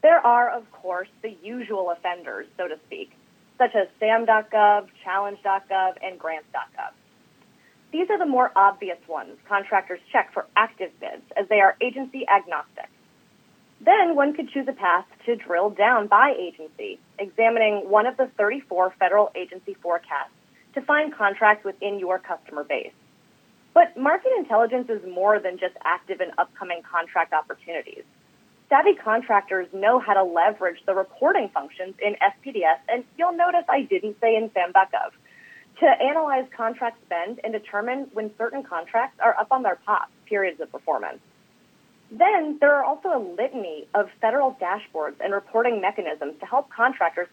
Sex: female